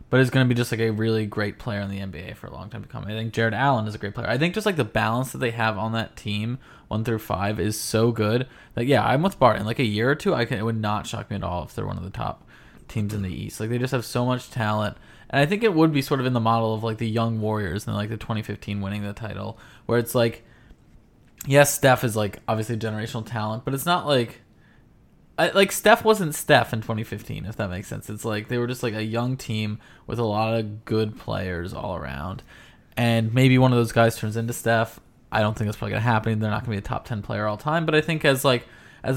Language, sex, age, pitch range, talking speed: English, male, 20-39, 105-130 Hz, 275 wpm